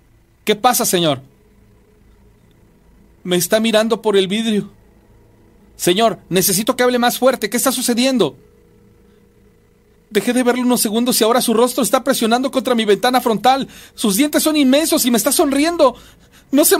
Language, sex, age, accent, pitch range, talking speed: Spanish, male, 40-59, Mexican, 205-285 Hz, 155 wpm